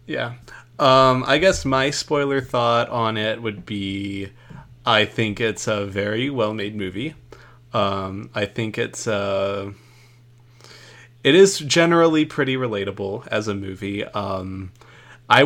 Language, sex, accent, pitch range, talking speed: English, male, American, 110-140 Hz, 130 wpm